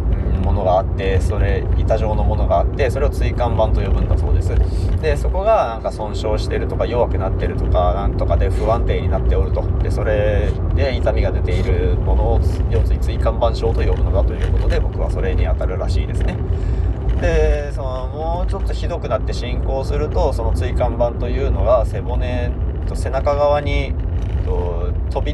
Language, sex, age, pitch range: Japanese, male, 20-39, 80-95 Hz